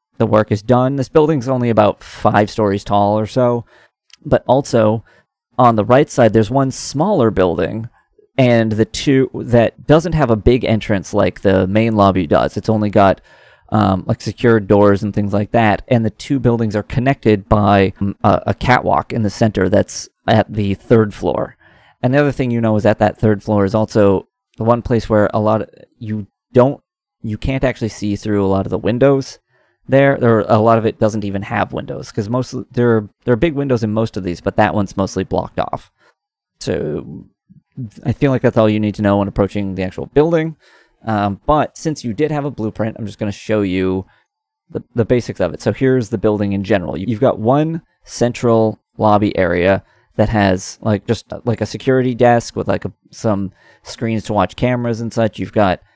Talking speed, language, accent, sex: 210 wpm, English, American, male